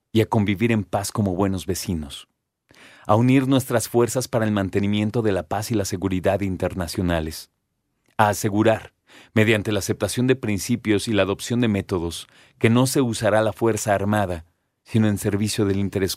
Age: 40-59